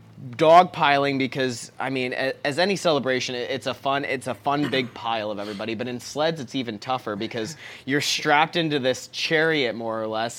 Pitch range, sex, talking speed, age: 120-140 Hz, male, 185 wpm, 20-39